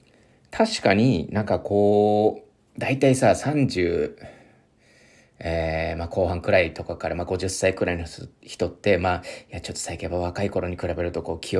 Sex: male